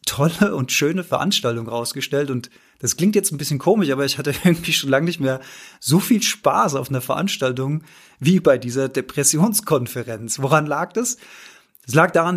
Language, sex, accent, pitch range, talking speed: German, male, German, 135-175 Hz, 175 wpm